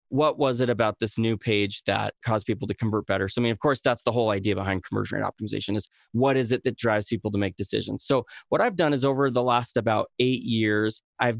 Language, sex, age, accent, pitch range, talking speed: English, male, 20-39, American, 105-125 Hz, 255 wpm